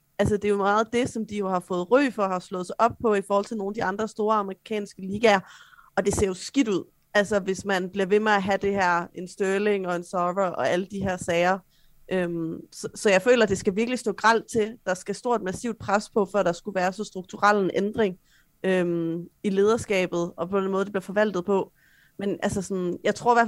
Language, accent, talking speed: Danish, native, 255 wpm